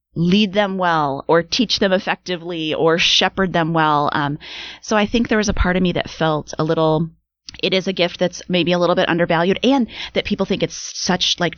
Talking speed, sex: 220 wpm, female